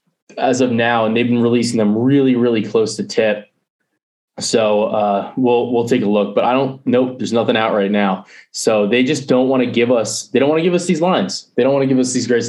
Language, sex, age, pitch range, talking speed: English, male, 20-39, 105-130 Hz, 255 wpm